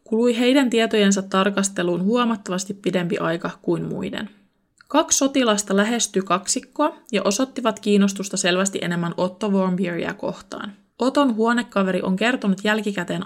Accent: native